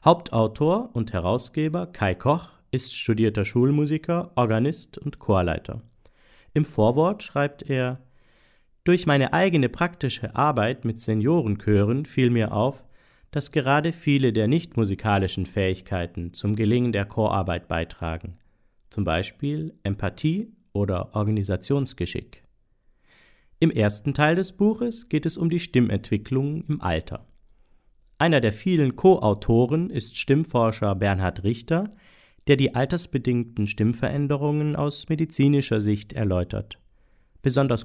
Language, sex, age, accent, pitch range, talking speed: German, male, 40-59, German, 105-145 Hz, 110 wpm